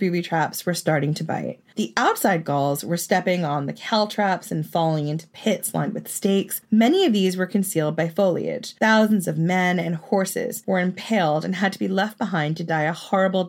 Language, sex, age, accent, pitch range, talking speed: English, female, 30-49, American, 155-210 Hz, 205 wpm